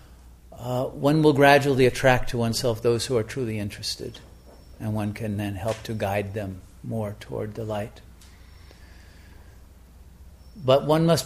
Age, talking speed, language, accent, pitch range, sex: 50-69, 145 wpm, English, American, 105-135 Hz, male